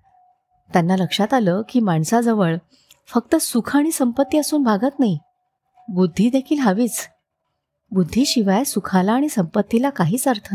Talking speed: 125 wpm